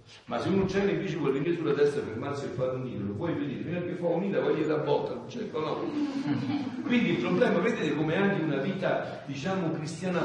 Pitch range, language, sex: 140-200 Hz, Italian, male